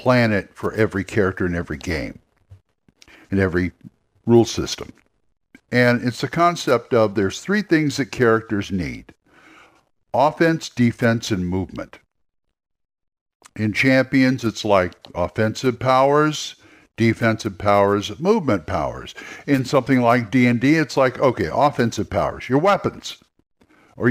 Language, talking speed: English, 120 wpm